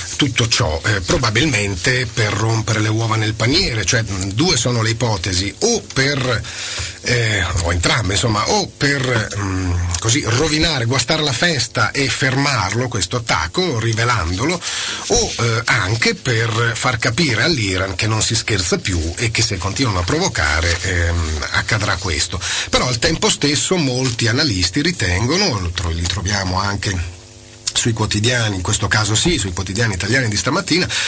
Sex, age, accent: male, 40-59, native